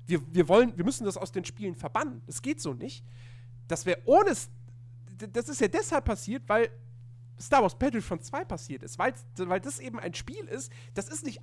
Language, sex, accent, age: German, male, German, 40-59